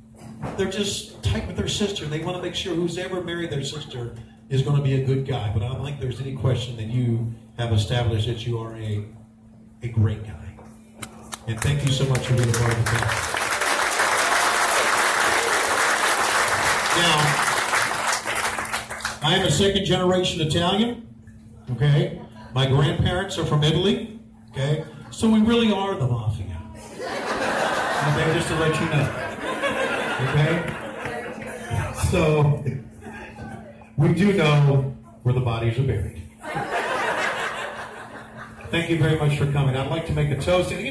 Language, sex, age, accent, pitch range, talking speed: English, male, 40-59, American, 115-155 Hz, 150 wpm